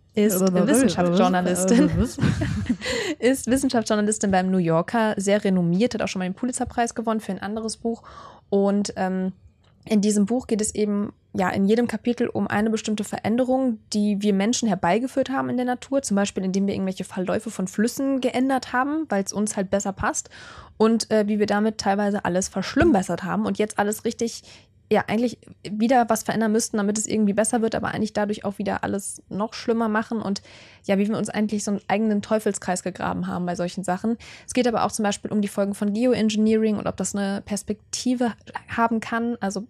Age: 20-39